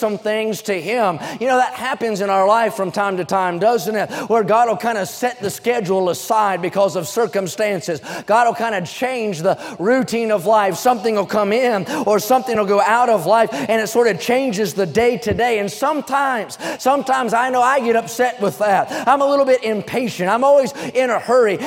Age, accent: 30-49, American